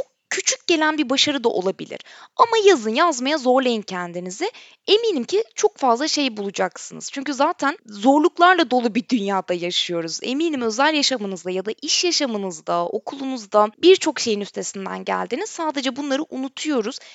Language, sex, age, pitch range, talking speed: Turkish, female, 20-39, 230-325 Hz, 135 wpm